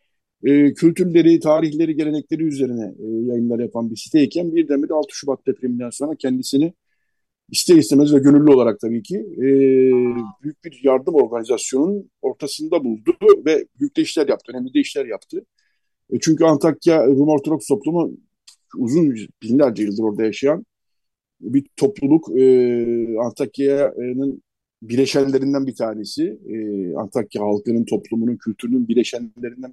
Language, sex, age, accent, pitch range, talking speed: Turkish, male, 50-69, native, 115-155 Hz, 125 wpm